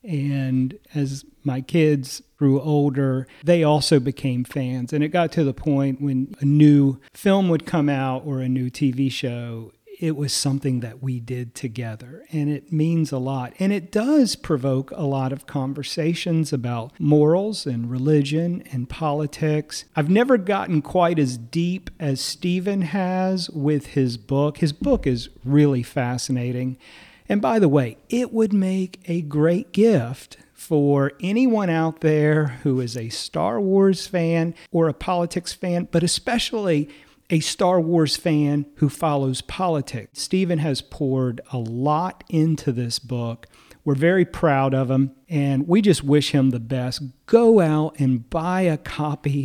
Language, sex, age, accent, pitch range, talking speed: English, male, 40-59, American, 135-170 Hz, 160 wpm